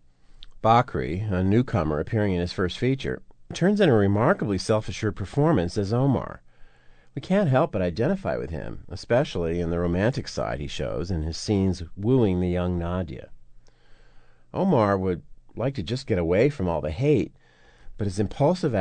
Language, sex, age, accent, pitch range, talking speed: English, male, 40-59, American, 85-130 Hz, 165 wpm